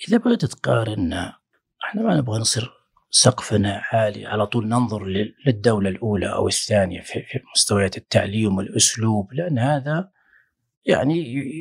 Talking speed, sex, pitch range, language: 120 wpm, male, 105-140 Hz, Arabic